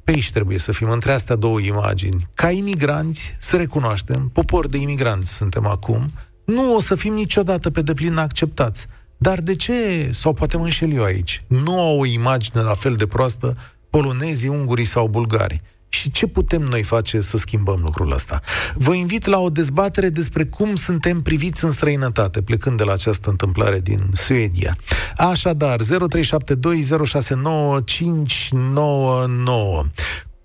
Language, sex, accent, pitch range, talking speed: Romanian, male, native, 105-155 Hz, 150 wpm